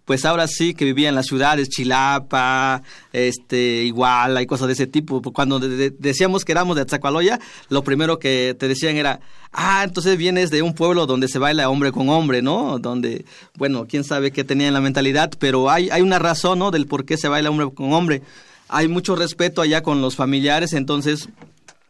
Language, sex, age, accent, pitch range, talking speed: Spanish, male, 40-59, Mexican, 130-150 Hz, 200 wpm